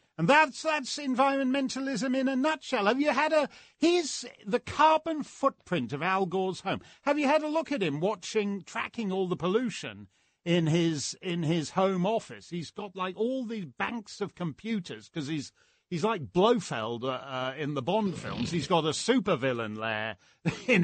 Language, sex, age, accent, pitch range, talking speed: English, male, 50-69, British, 150-225 Hz, 180 wpm